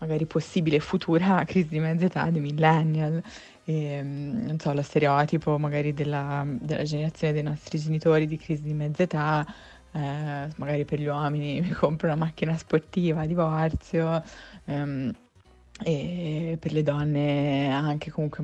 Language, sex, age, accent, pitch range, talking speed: Italian, female, 20-39, native, 150-170 Hz, 145 wpm